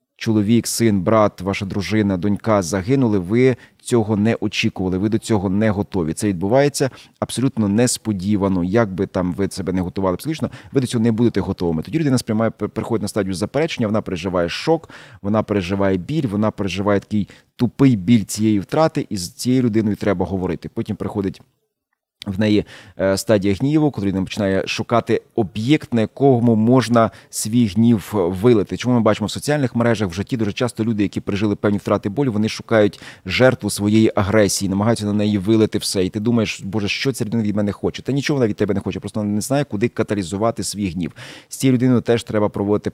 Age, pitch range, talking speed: 30-49, 100-120 Hz, 185 wpm